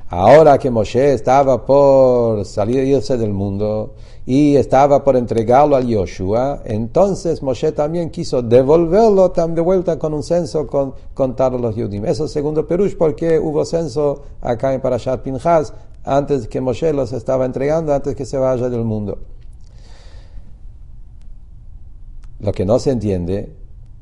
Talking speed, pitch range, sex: 140 wpm, 105-135 Hz, male